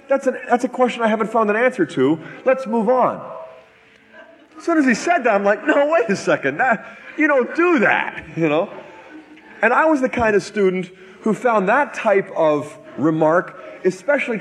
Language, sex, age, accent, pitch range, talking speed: English, male, 40-59, American, 160-235 Hz, 185 wpm